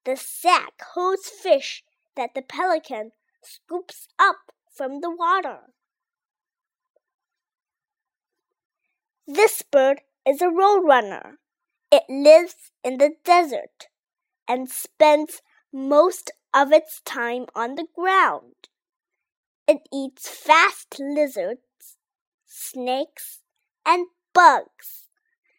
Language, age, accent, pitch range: Chinese, 20-39, American, 275-365 Hz